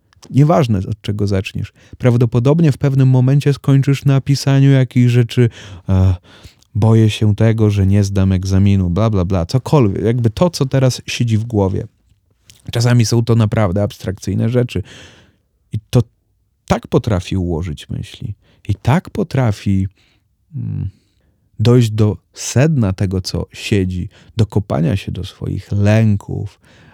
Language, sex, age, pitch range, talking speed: Polish, male, 30-49, 100-125 Hz, 130 wpm